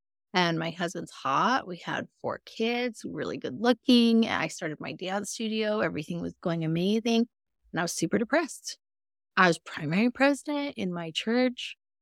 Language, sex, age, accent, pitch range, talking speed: English, female, 30-49, American, 165-225 Hz, 160 wpm